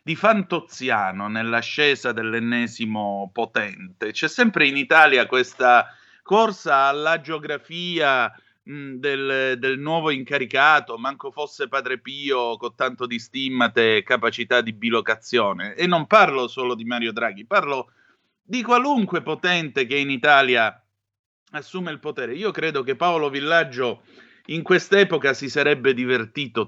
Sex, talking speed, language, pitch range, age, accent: male, 125 wpm, Italian, 120-170 Hz, 30-49, native